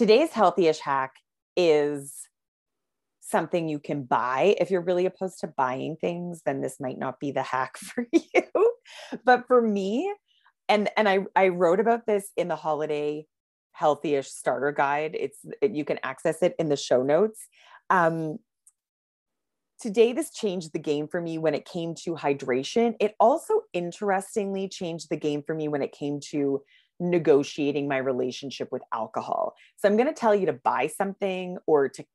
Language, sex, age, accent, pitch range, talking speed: English, female, 30-49, American, 140-200 Hz, 170 wpm